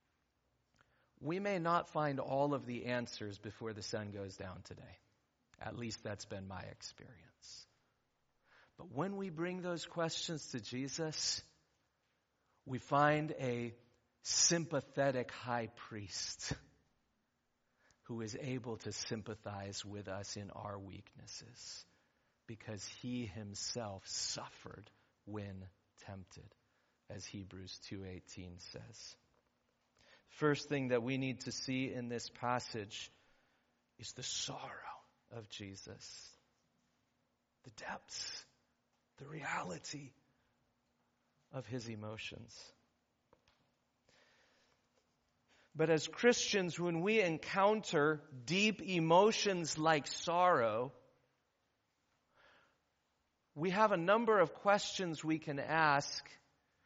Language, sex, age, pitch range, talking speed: English, male, 40-59, 105-155 Hz, 100 wpm